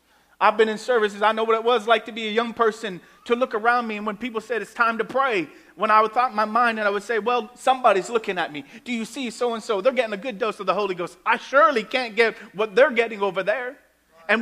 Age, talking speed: 30-49, 275 wpm